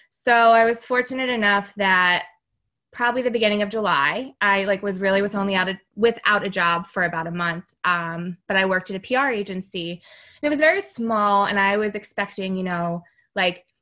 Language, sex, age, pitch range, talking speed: English, female, 20-39, 180-215 Hz, 200 wpm